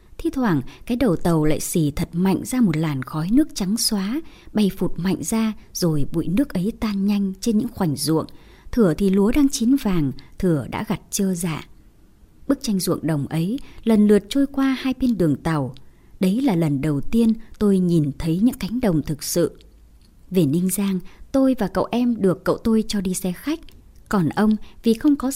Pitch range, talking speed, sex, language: 165-230 Hz, 205 wpm, male, Vietnamese